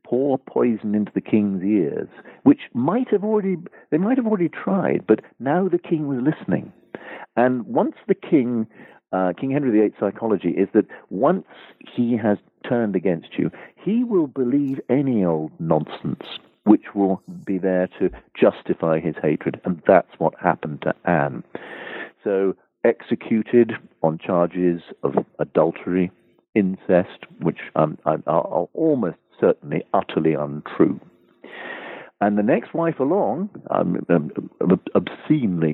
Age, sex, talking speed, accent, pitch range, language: 50-69, male, 135 wpm, British, 90-125 Hz, English